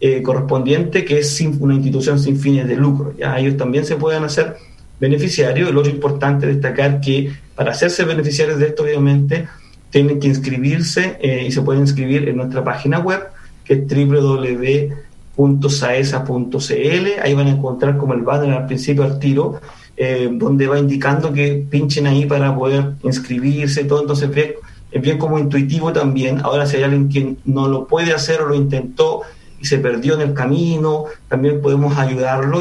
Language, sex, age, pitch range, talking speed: Spanish, male, 40-59, 135-150 Hz, 170 wpm